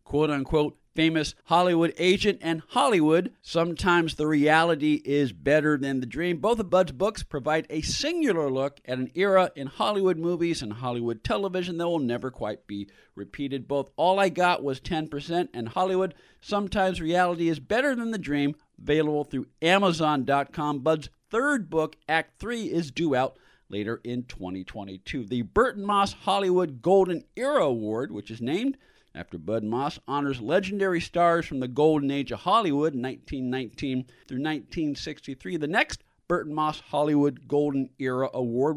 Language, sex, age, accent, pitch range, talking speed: English, male, 50-69, American, 135-180 Hz, 155 wpm